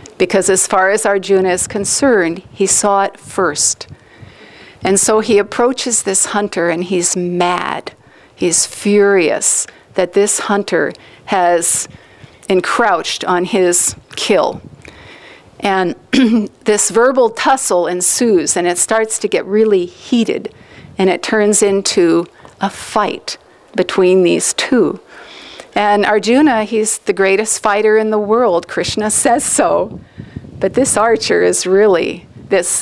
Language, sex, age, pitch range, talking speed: English, female, 50-69, 185-220 Hz, 125 wpm